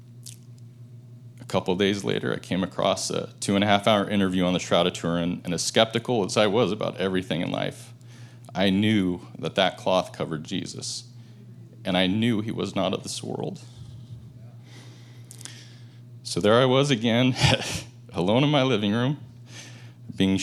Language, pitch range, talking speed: English, 105-120 Hz, 155 wpm